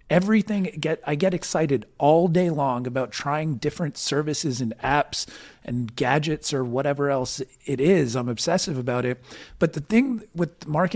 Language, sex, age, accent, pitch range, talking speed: English, male, 40-59, American, 130-165 Hz, 165 wpm